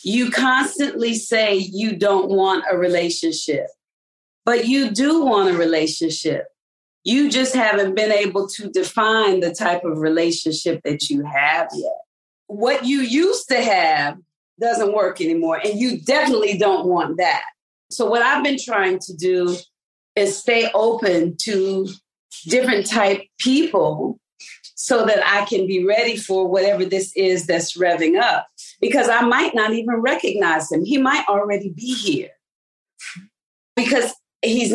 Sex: female